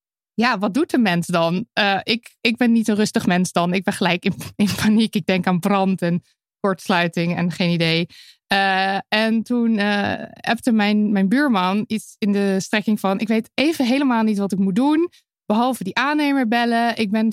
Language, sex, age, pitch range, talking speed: Dutch, female, 20-39, 195-255 Hz, 200 wpm